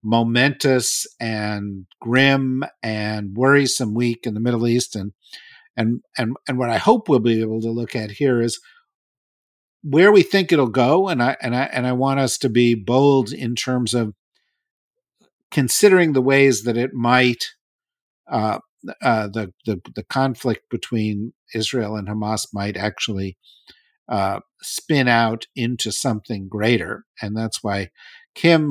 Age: 50-69